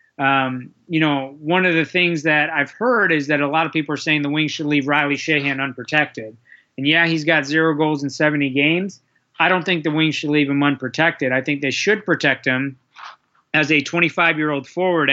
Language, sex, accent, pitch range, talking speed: English, male, American, 135-160 Hz, 220 wpm